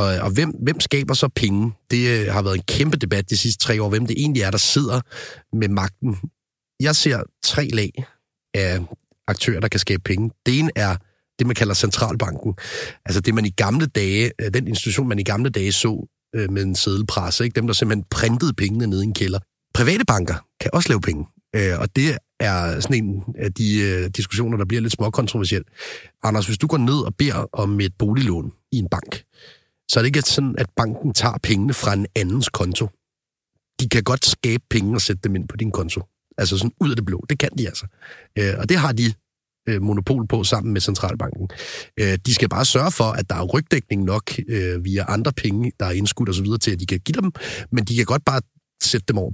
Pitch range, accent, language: 100-125 Hz, native, Danish